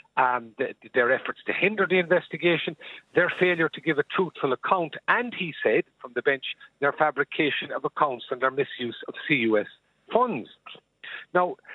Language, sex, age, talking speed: English, male, 50-69, 160 wpm